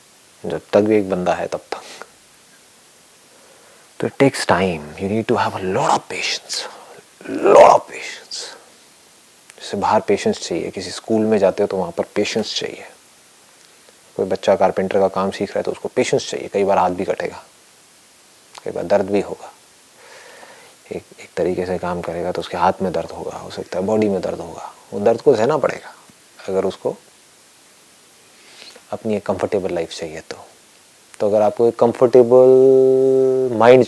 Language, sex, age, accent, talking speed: English, male, 30-49, Indian, 85 wpm